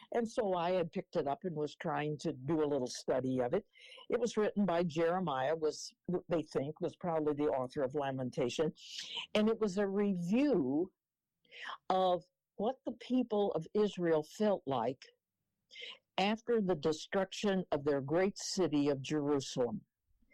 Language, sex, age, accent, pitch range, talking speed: English, female, 60-79, American, 160-215 Hz, 155 wpm